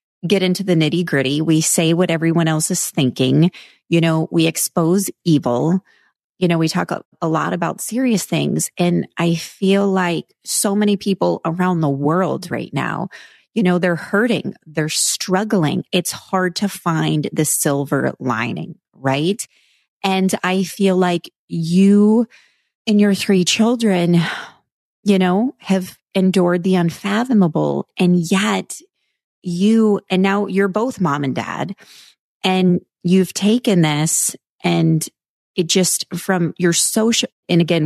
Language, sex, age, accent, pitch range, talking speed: English, female, 30-49, American, 165-200 Hz, 140 wpm